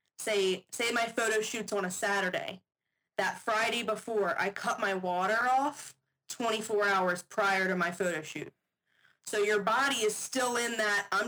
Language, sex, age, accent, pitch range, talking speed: English, female, 20-39, American, 190-225 Hz, 165 wpm